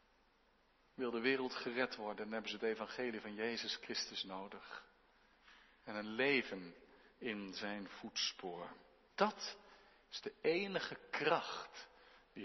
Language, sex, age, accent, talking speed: Dutch, male, 50-69, Dutch, 125 wpm